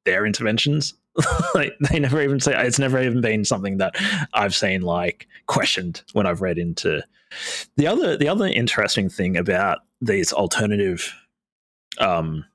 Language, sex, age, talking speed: English, male, 30-49, 150 wpm